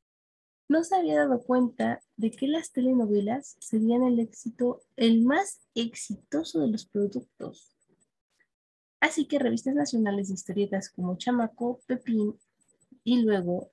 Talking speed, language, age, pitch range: 125 wpm, Spanish, 20-39, 200-255 Hz